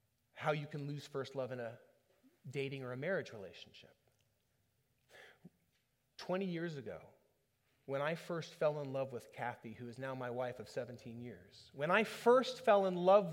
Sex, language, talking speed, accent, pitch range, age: male, English, 170 wpm, American, 155-230 Hz, 30-49